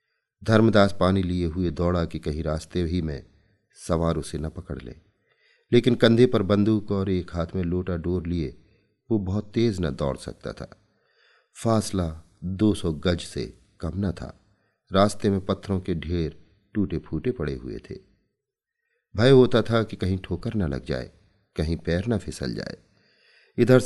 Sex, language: male, Hindi